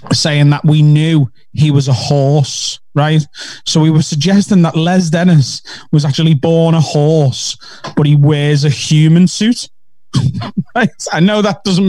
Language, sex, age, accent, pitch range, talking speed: English, male, 20-39, British, 150-180 Hz, 160 wpm